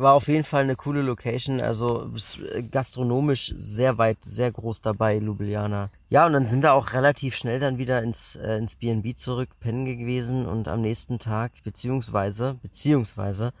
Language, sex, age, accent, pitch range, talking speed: German, male, 30-49, German, 110-125 Hz, 170 wpm